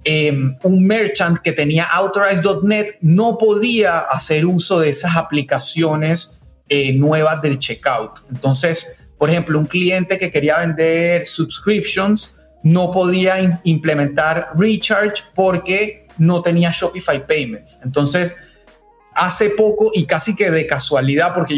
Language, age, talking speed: Spanish, 30-49, 120 wpm